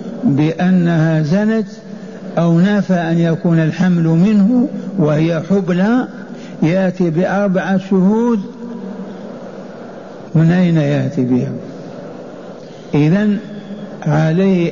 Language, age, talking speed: Arabic, 60-79, 75 wpm